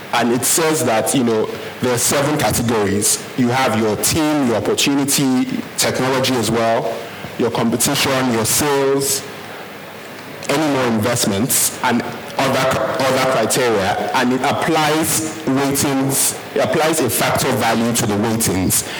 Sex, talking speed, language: male, 135 wpm, English